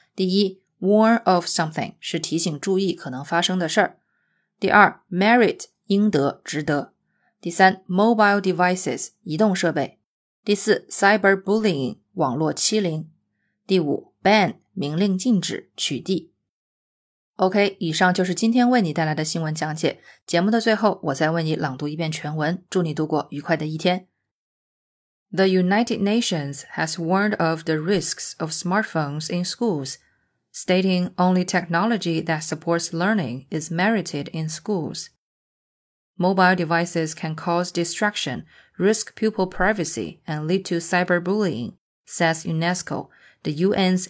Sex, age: female, 20-39